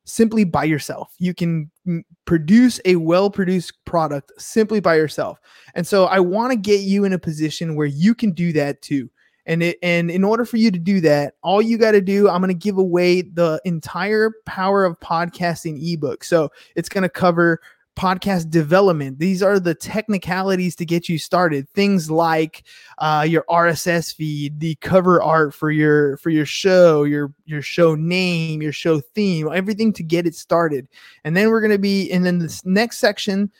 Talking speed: 185 wpm